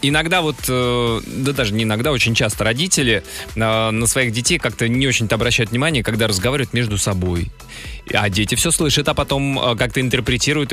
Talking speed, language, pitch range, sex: 160 wpm, Russian, 105-130 Hz, male